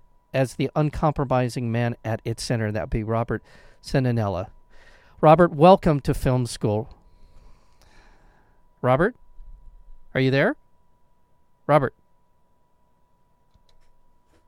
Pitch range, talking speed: 80-125 Hz, 90 wpm